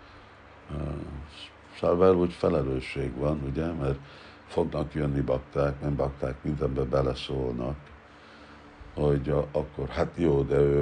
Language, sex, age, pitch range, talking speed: Hungarian, male, 60-79, 70-75 Hz, 105 wpm